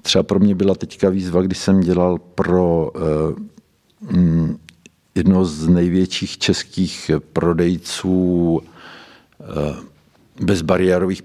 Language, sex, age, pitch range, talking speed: Czech, male, 50-69, 85-95 Hz, 85 wpm